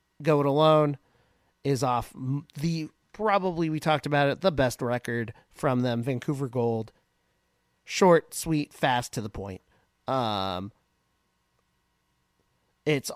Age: 40-59